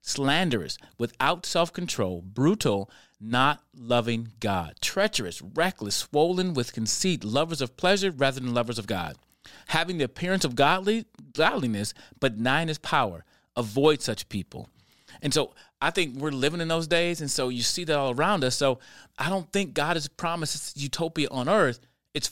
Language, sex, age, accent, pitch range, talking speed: English, male, 30-49, American, 115-155 Hz, 165 wpm